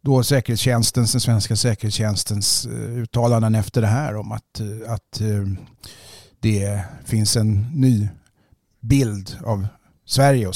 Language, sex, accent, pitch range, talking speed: Swedish, male, native, 105-125 Hz, 110 wpm